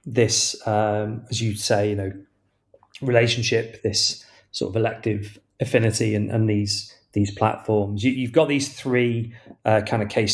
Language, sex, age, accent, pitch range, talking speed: English, male, 30-49, British, 105-130 Hz, 155 wpm